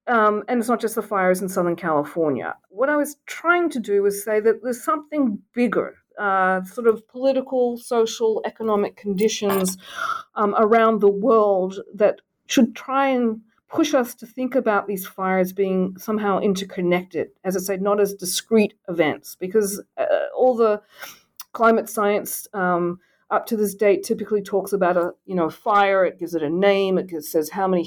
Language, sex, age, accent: English, female, 50-69, Australian